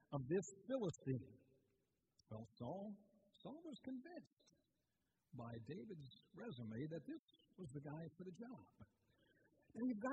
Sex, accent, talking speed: male, American, 125 wpm